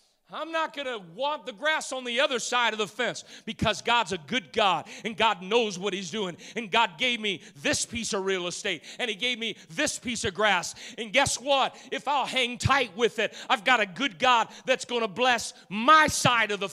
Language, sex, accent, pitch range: English, male, American, 175-245 Hz